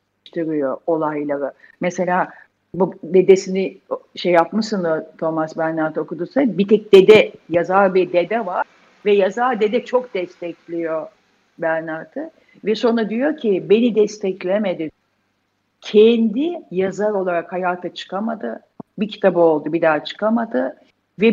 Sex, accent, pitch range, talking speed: female, native, 170-230 Hz, 115 wpm